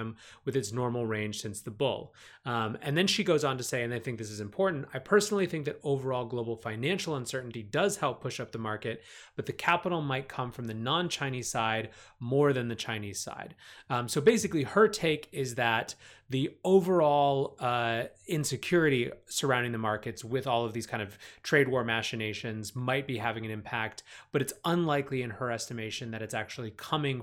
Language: English